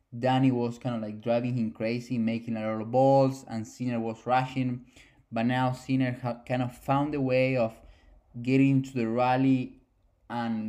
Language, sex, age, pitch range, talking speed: English, male, 20-39, 110-125 Hz, 180 wpm